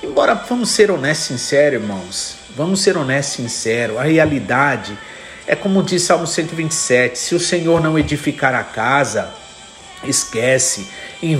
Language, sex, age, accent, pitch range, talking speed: Portuguese, male, 50-69, Brazilian, 135-165 Hz, 145 wpm